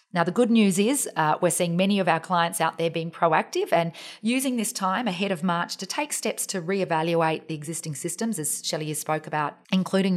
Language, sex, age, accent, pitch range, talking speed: English, female, 30-49, Australian, 150-190 Hz, 220 wpm